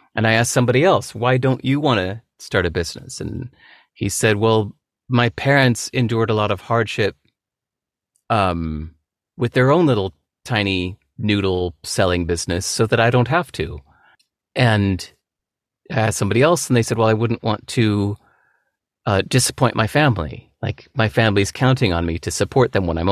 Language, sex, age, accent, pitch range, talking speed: English, male, 30-49, American, 95-125 Hz, 175 wpm